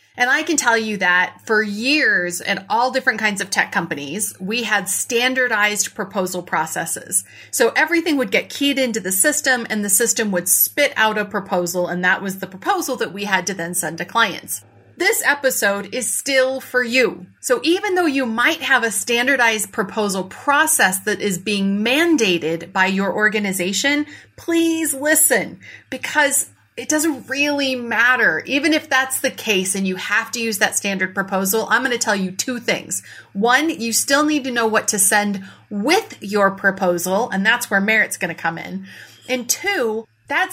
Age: 30-49